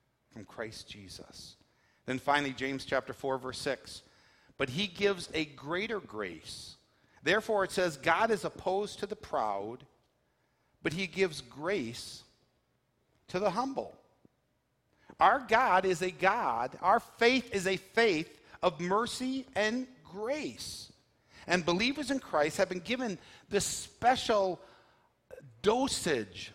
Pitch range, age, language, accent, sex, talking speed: 135-200 Hz, 50-69, English, American, male, 125 wpm